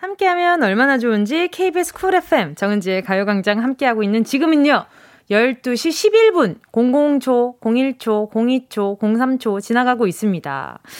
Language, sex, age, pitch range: Korean, female, 20-39, 215-320 Hz